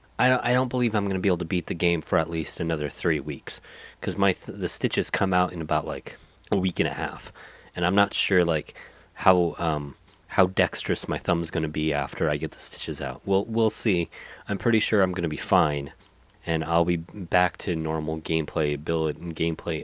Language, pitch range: English, 80-95 Hz